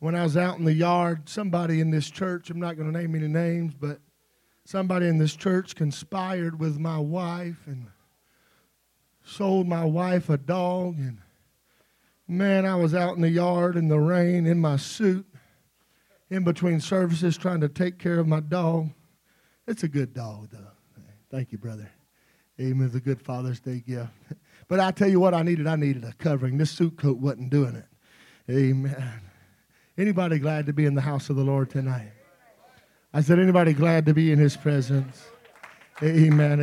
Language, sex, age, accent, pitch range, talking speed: English, male, 40-59, American, 150-205 Hz, 180 wpm